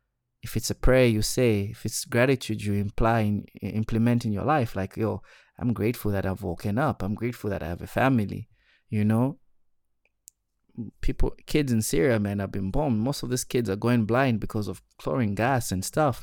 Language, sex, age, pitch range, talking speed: English, male, 20-39, 100-120 Hz, 200 wpm